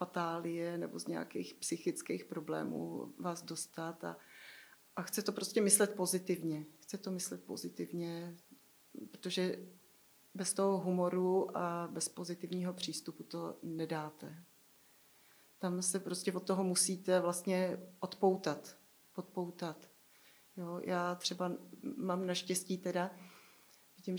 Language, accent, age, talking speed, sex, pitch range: Czech, native, 30-49, 105 wpm, female, 175-190 Hz